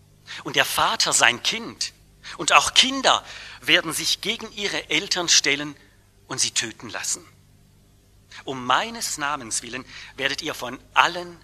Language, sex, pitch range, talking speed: English, male, 105-170 Hz, 135 wpm